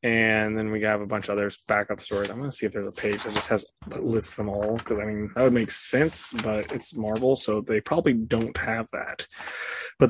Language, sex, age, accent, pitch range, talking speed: English, male, 20-39, American, 110-125 Hz, 250 wpm